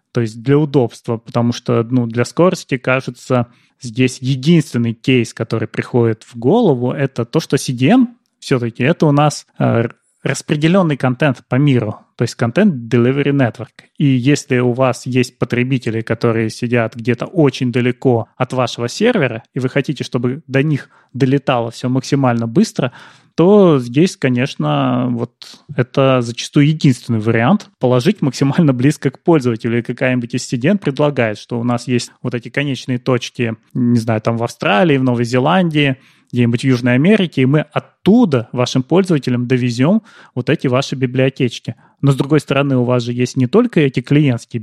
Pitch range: 120-150 Hz